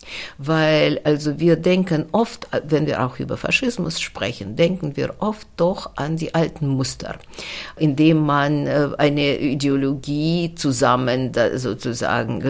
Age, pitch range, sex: 50-69, 130-165 Hz, female